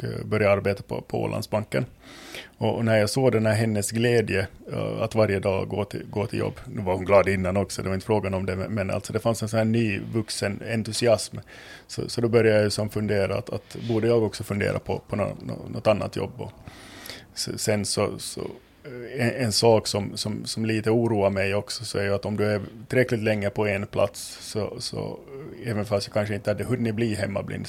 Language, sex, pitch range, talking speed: Swedish, male, 100-115 Hz, 225 wpm